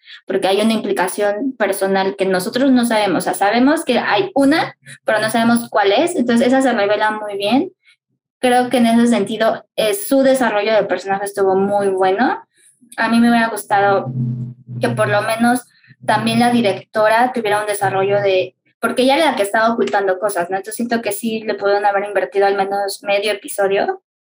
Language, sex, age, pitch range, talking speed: Spanish, female, 20-39, 195-240 Hz, 190 wpm